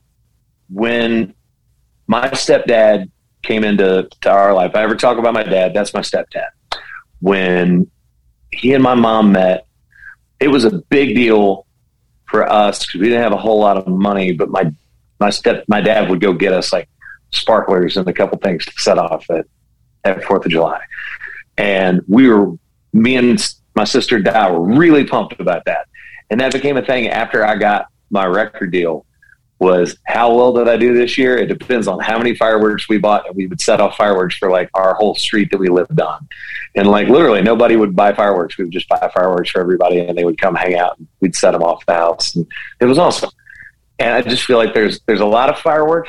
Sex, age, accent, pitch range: male, 40-59, American, 95-120 Hz